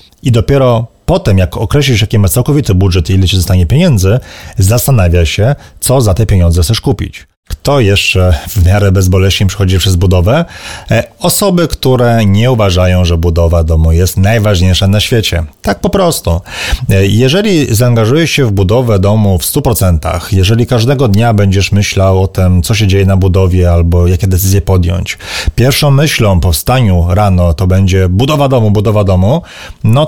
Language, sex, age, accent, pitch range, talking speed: Polish, male, 30-49, native, 90-115 Hz, 160 wpm